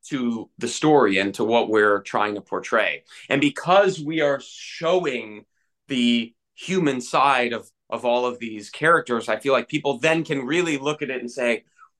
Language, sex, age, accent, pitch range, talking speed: English, male, 30-49, American, 125-180 Hz, 180 wpm